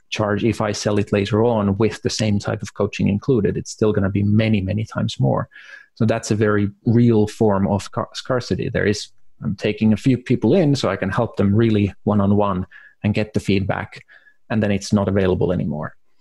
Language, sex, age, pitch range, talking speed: English, male, 30-49, 100-125 Hz, 205 wpm